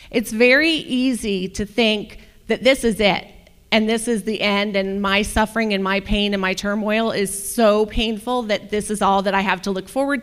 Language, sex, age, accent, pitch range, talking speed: English, female, 30-49, American, 195-230 Hz, 210 wpm